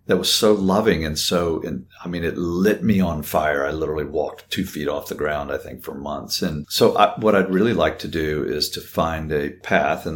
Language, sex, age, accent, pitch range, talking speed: English, male, 50-69, American, 80-95 Hz, 240 wpm